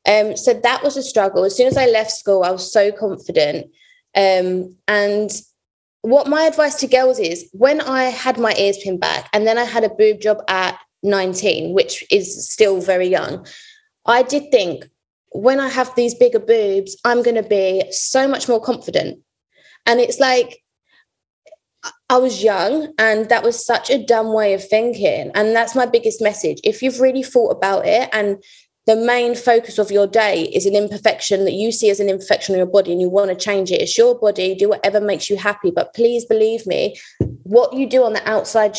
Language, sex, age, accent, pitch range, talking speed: English, female, 20-39, British, 200-255 Hz, 205 wpm